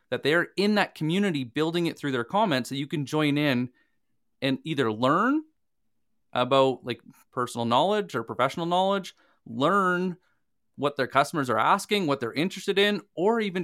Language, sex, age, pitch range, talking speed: English, male, 20-39, 130-180 Hz, 165 wpm